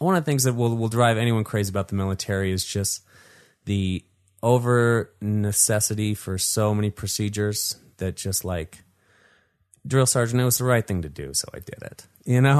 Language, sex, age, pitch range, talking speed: English, male, 30-49, 95-120 Hz, 185 wpm